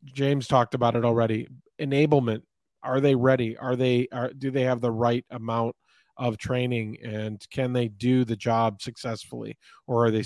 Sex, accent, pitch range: male, American, 120-135 Hz